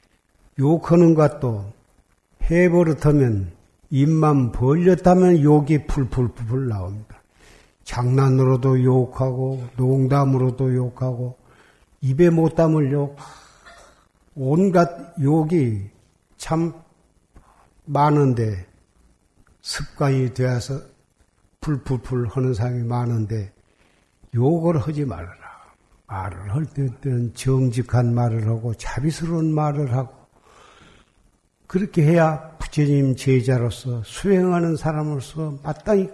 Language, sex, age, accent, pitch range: Korean, male, 50-69, native, 120-150 Hz